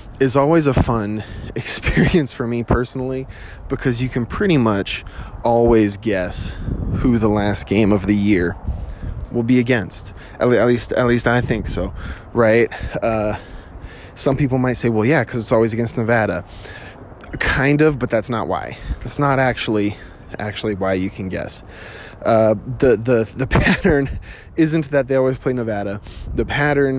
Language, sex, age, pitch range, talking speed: English, male, 20-39, 100-130 Hz, 160 wpm